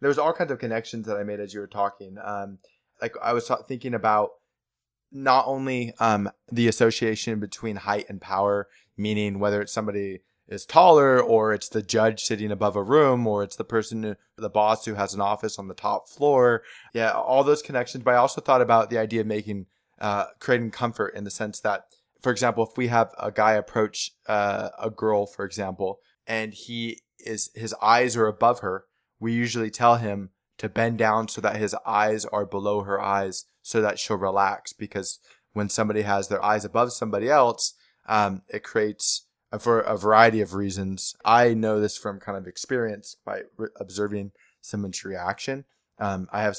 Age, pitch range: 20-39, 100-115 Hz